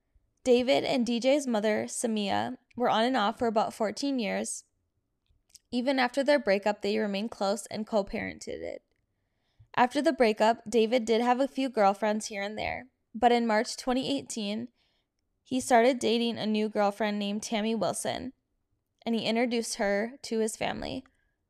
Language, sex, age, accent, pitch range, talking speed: English, female, 10-29, American, 210-250 Hz, 155 wpm